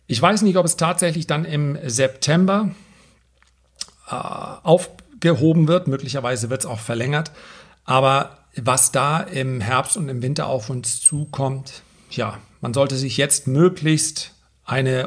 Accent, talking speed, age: German, 140 wpm, 40-59